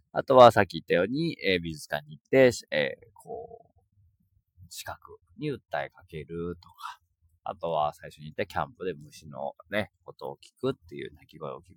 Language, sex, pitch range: Japanese, male, 85-140 Hz